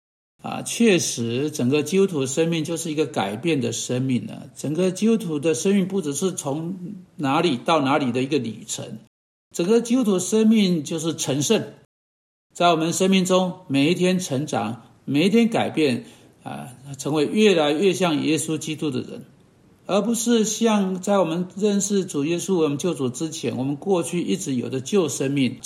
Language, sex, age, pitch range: Chinese, male, 60-79, 140-195 Hz